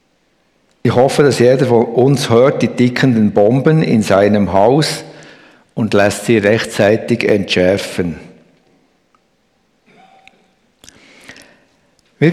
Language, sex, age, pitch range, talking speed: German, male, 60-79, 100-140 Hz, 90 wpm